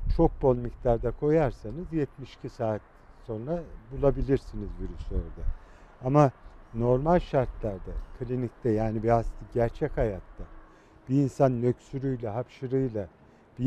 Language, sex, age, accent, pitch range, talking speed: Turkish, male, 50-69, native, 105-140 Hz, 105 wpm